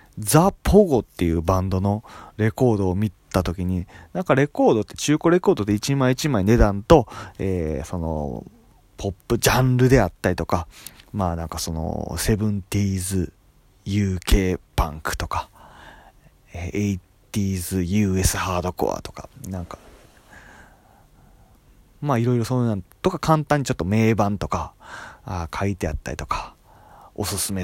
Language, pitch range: Japanese, 95-155 Hz